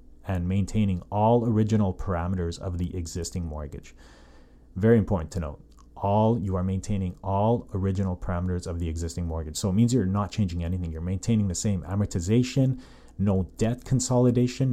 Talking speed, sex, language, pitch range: 160 wpm, male, English, 90-110 Hz